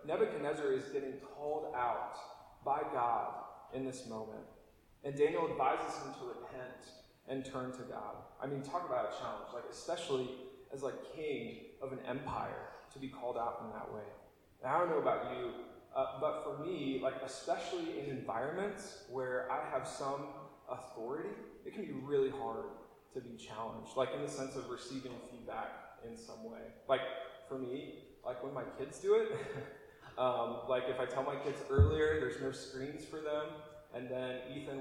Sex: male